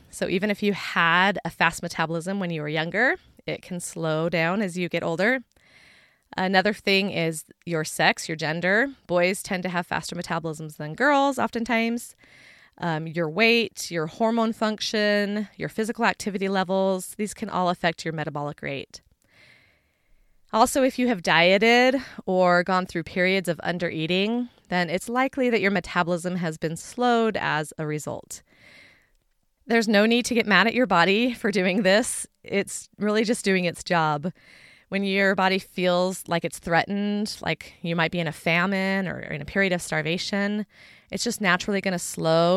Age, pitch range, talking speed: 20-39, 170-215 Hz, 170 wpm